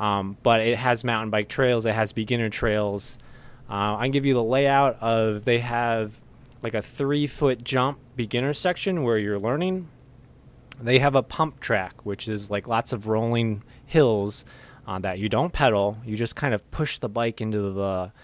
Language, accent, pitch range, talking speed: English, American, 105-125 Hz, 190 wpm